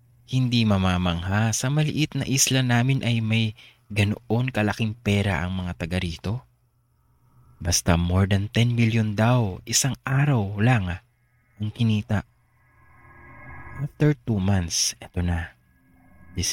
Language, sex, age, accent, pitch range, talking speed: English, male, 20-39, Filipino, 95-120 Hz, 120 wpm